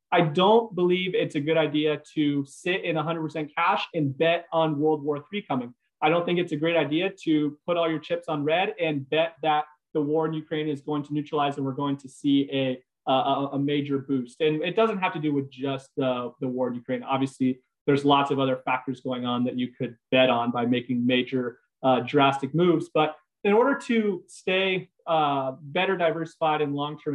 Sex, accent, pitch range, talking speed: male, American, 140-170 Hz, 210 wpm